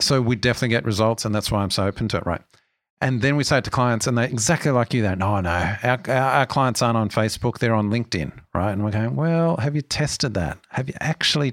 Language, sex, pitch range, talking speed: English, male, 110-140 Hz, 265 wpm